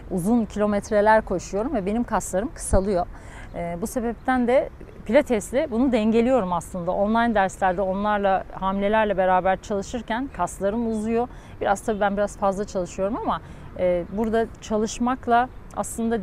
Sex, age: female, 40-59